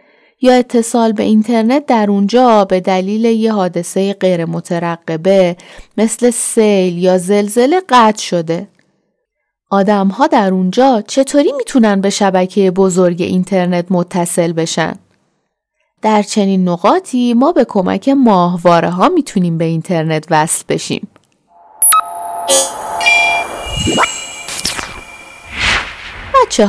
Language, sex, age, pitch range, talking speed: Persian, female, 30-49, 175-240 Hz, 95 wpm